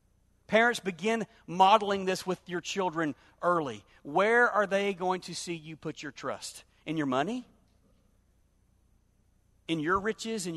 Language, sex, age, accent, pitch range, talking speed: English, male, 40-59, American, 115-185 Hz, 140 wpm